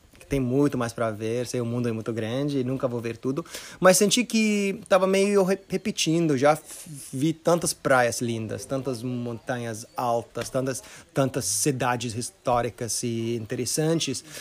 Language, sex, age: Portuguese, male, 30-49